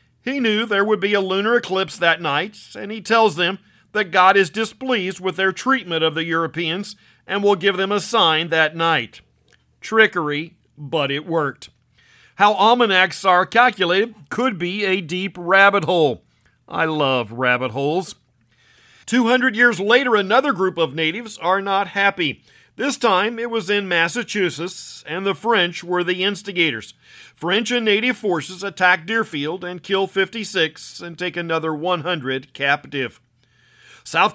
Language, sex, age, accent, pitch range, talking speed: English, male, 50-69, American, 160-215 Hz, 155 wpm